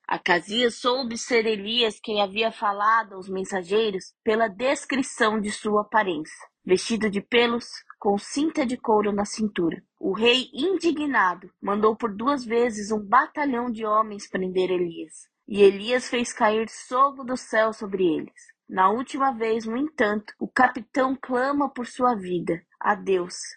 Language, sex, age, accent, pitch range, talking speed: Portuguese, female, 20-39, Brazilian, 200-250 Hz, 150 wpm